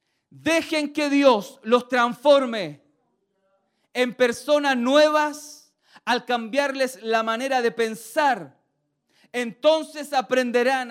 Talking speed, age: 90 wpm, 40-59